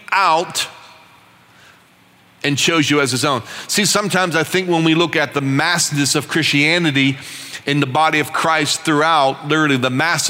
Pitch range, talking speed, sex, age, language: 135-175 Hz, 165 wpm, male, 40-59, English